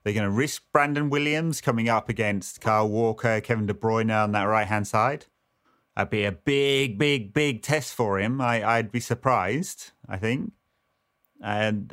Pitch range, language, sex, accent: 100-135 Hz, English, male, British